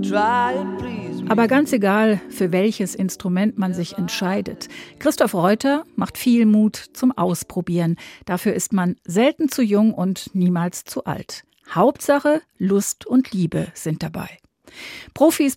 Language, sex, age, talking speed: German, female, 50-69, 125 wpm